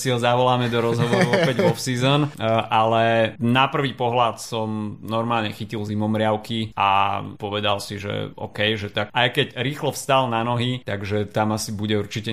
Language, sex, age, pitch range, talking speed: Slovak, male, 30-49, 105-125 Hz, 175 wpm